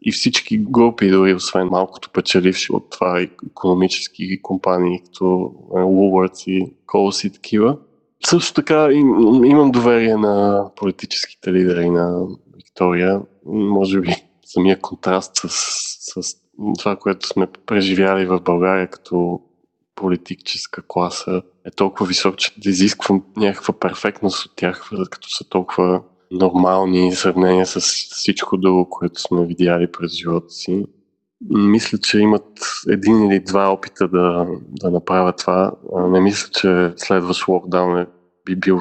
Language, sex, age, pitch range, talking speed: Bulgarian, male, 20-39, 90-100 Hz, 130 wpm